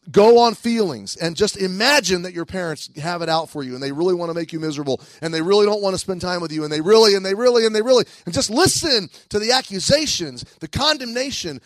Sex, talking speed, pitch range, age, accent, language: male, 255 wpm, 160-210 Hz, 30-49, American, English